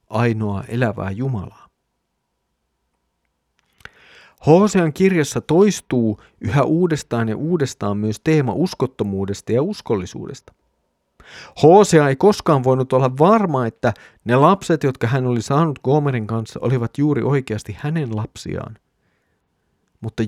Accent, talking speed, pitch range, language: native, 105 wpm, 100-140 Hz, Finnish